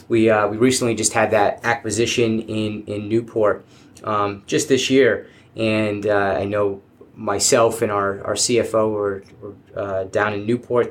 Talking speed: 165 wpm